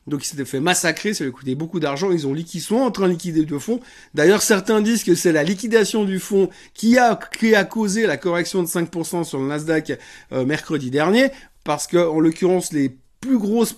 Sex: male